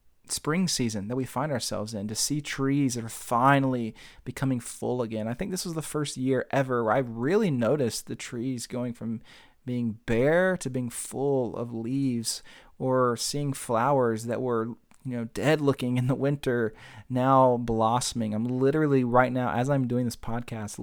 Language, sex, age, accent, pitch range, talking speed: English, male, 30-49, American, 115-145 Hz, 180 wpm